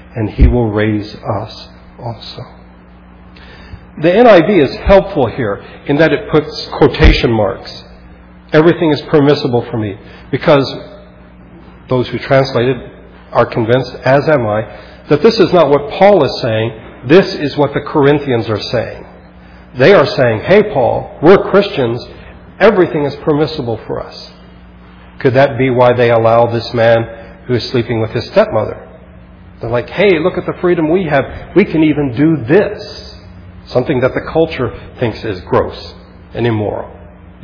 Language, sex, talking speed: English, male, 150 wpm